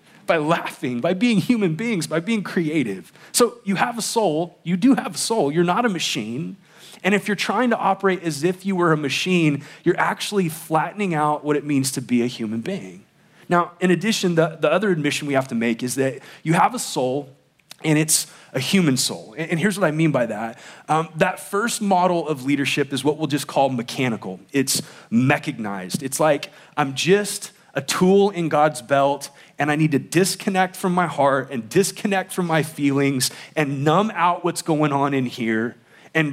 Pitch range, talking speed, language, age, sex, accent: 135-180 Hz, 200 wpm, English, 30-49, male, American